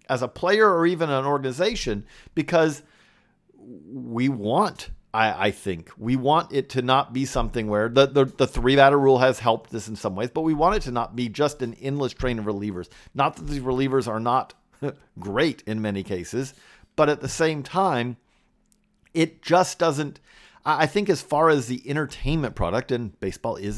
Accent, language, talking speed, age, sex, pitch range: American, English, 185 wpm, 40-59, male, 105-145 Hz